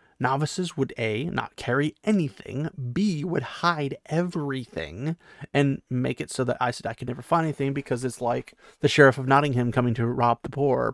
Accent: American